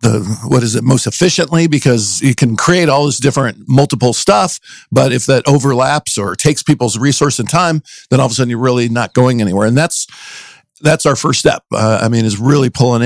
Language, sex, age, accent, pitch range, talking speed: English, male, 50-69, American, 115-145 Hz, 215 wpm